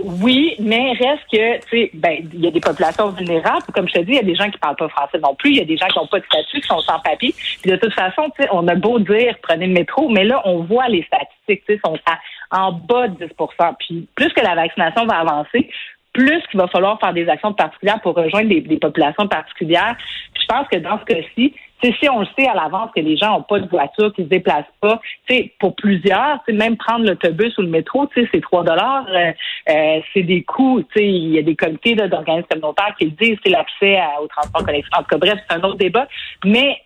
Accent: Canadian